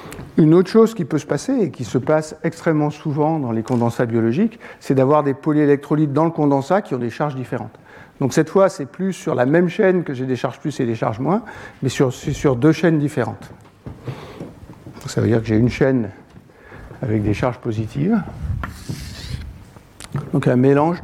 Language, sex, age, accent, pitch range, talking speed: French, male, 60-79, French, 120-155 Hz, 195 wpm